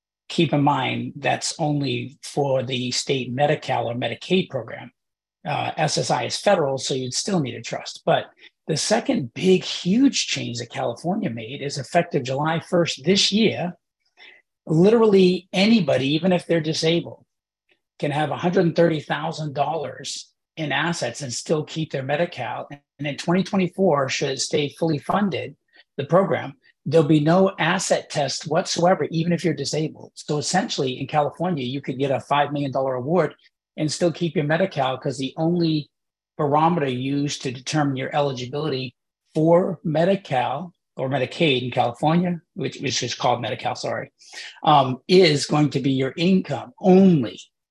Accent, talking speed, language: American, 150 wpm, English